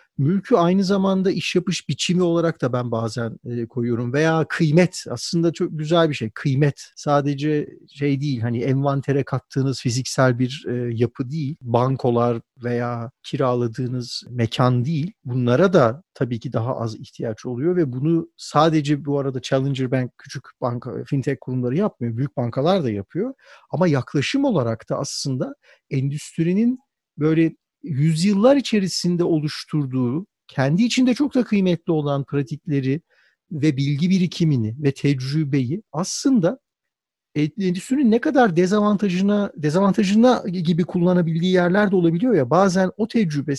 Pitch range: 135-185 Hz